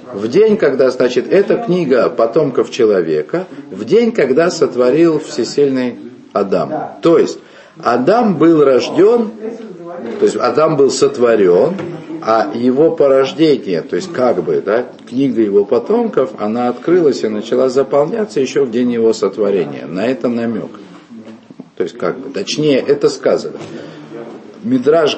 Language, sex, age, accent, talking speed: Russian, male, 50-69, native, 135 wpm